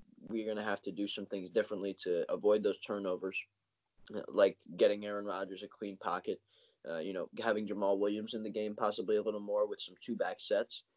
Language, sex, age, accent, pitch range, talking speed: English, male, 20-39, American, 100-135 Hz, 200 wpm